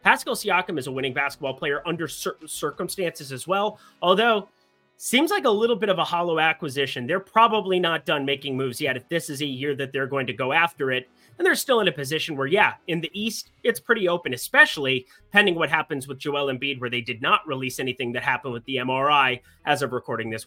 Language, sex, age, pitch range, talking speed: English, male, 30-49, 130-225 Hz, 225 wpm